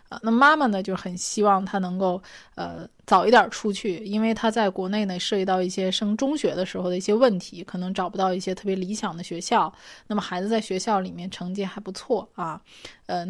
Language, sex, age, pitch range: Chinese, female, 20-39, 185-225 Hz